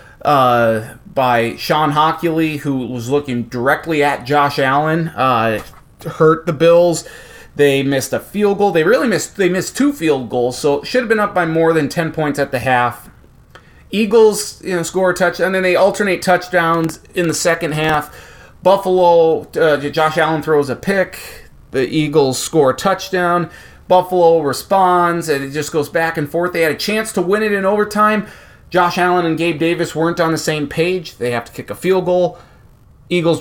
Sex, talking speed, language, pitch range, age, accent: male, 190 wpm, English, 145-180 Hz, 30-49, American